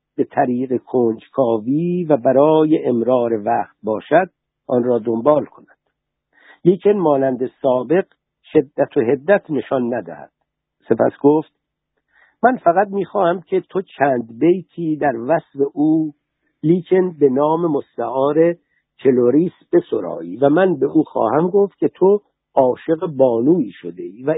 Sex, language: male, Persian